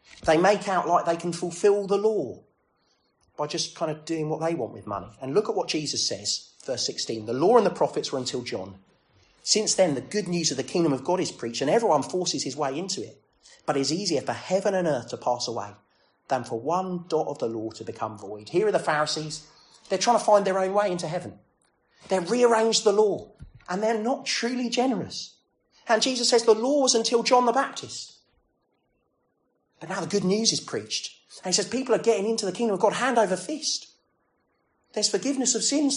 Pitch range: 160-235 Hz